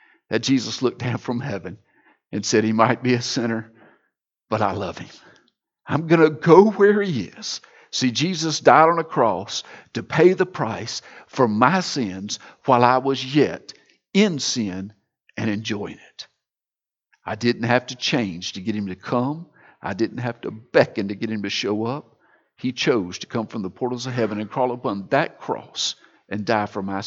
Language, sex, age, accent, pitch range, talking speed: English, male, 50-69, American, 105-130 Hz, 190 wpm